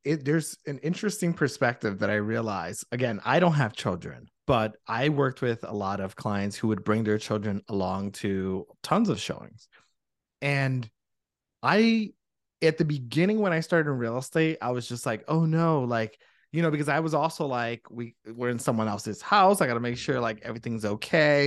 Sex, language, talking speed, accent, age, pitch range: male, English, 190 wpm, American, 30-49, 110-150 Hz